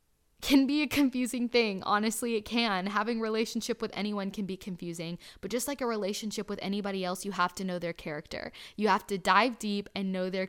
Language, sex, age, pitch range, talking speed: English, female, 10-29, 185-220 Hz, 220 wpm